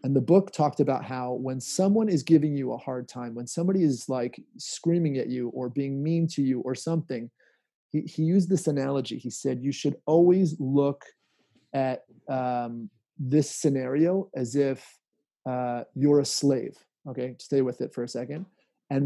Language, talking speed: English, 180 wpm